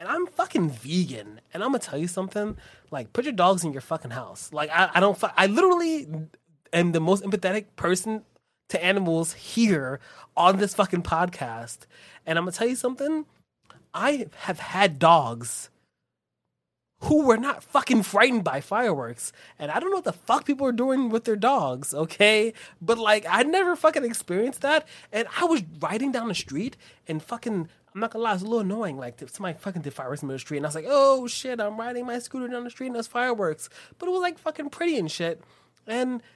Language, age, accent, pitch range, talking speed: English, 20-39, American, 155-245 Hz, 205 wpm